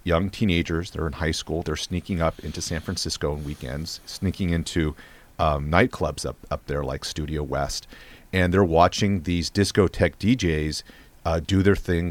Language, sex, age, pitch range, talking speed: English, male, 40-59, 80-100 Hz, 170 wpm